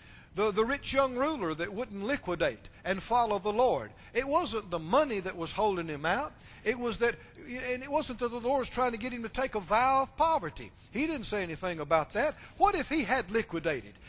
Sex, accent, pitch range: male, American, 195-275 Hz